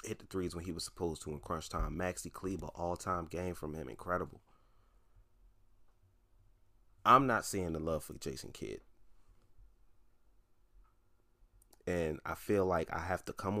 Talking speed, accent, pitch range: 155 wpm, American, 85-105 Hz